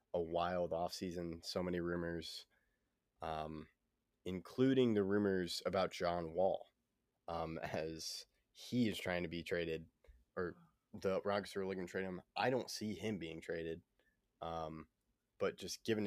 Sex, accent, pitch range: male, American, 85-95 Hz